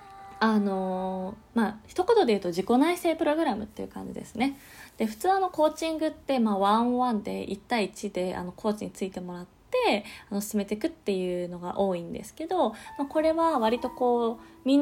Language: Japanese